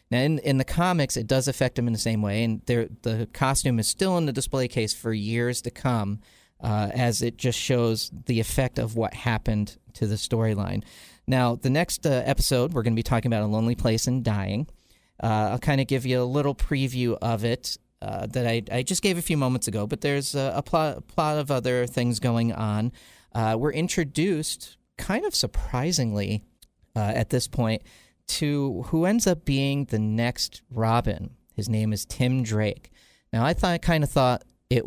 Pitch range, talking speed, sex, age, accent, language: 110-140 Hz, 205 wpm, male, 40-59, American, English